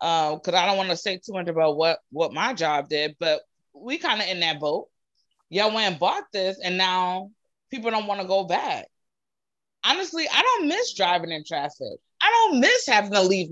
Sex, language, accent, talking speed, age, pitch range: female, English, American, 215 wpm, 20-39, 175-245 Hz